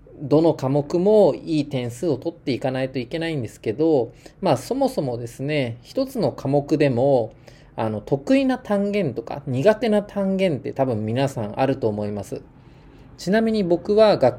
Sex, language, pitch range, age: male, Japanese, 125-200 Hz, 20-39